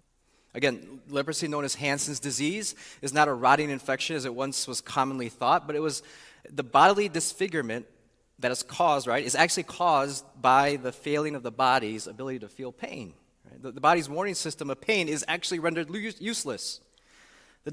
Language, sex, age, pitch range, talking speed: English, male, 30-49, 140-180 Hz, 180 wpm